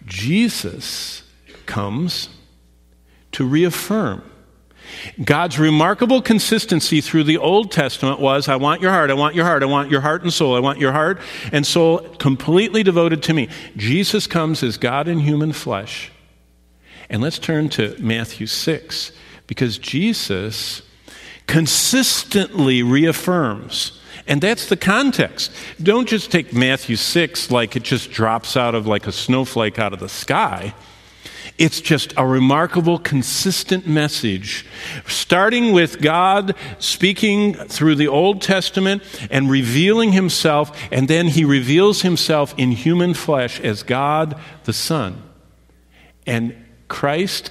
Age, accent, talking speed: 50-69, American, 135 wpm